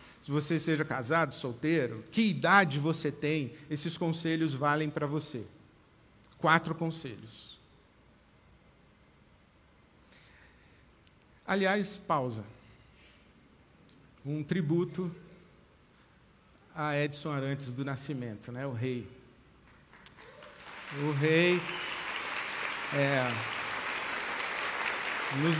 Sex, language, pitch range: male, Portuguese, 140-170 Hz